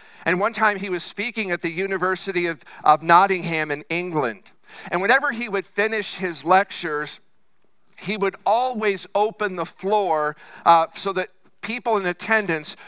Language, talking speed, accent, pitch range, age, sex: English, 155 wpm, American, 165-205 Hz, 50-69, male